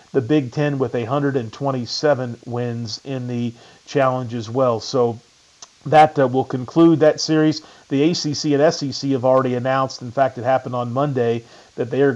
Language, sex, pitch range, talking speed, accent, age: English, male, 125-150 Hz, 170 wpm, American, 40-59